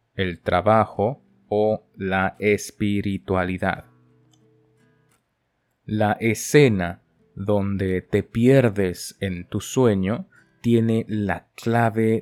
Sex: male